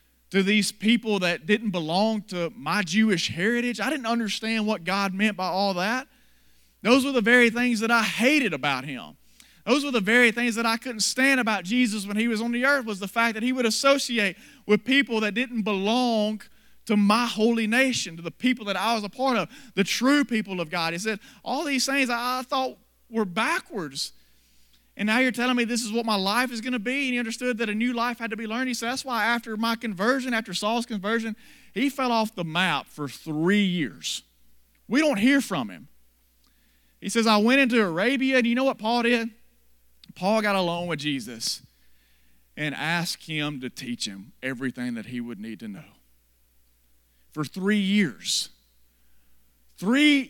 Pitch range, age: 165-240 Hz, 30-49